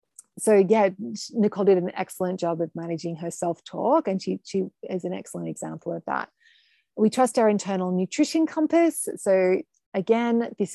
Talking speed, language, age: 160 wpm, English, 30-49